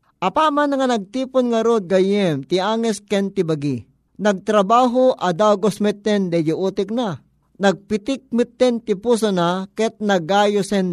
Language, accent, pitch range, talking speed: Filipino, native, 170-215 Hz, 115 wpm